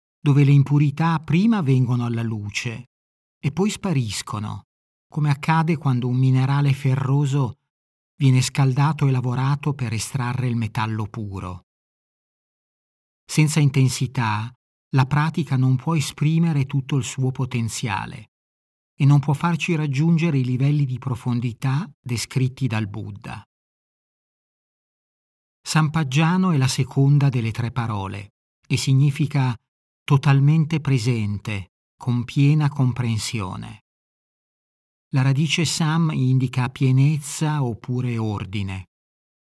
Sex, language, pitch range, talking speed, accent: male, Italian, 120-150 Hz, 105 wpm, native